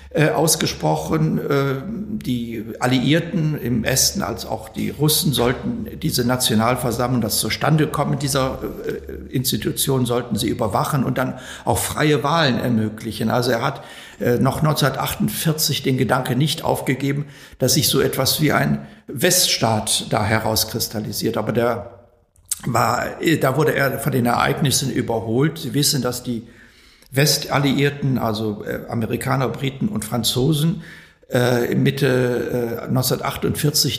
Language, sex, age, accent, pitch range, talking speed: German, male, 60-79, German, 115-145 Hz, 115 wpm